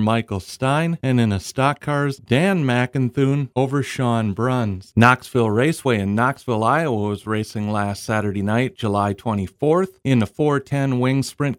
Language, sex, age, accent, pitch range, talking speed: English, male, 40-59, American, 110-150 Hz, 150 wpm